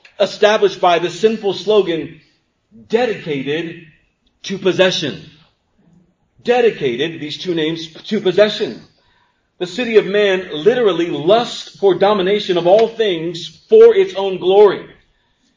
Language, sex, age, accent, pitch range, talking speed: English, male, 40-59, American, 160-210 Hz, 110 wpm